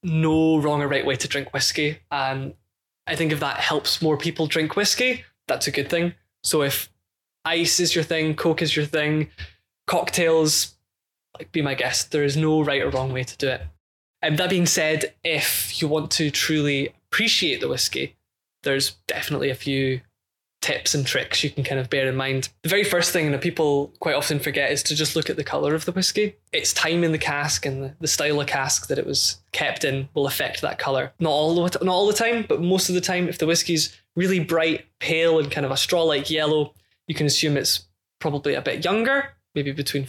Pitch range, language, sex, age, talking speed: 135-165 Hz, English, male, 20-39, 215 wpm